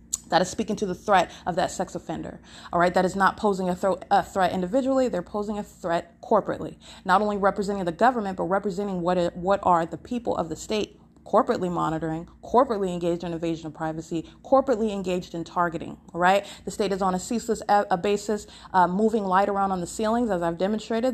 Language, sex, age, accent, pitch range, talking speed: English, female, 30-49, American, 180-205 Hz, 200 wpm